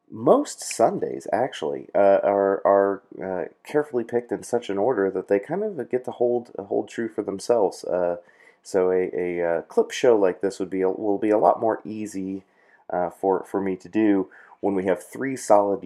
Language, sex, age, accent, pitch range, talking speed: English, male, 30-49, American, 95-125 Hz, 200 wpm